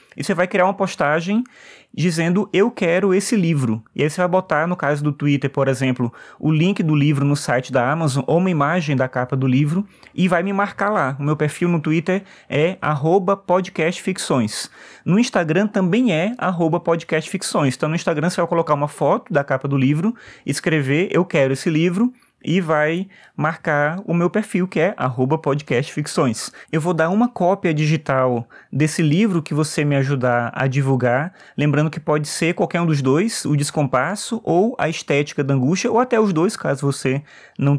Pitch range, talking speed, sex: 140-180 Hz, 190 wpm, male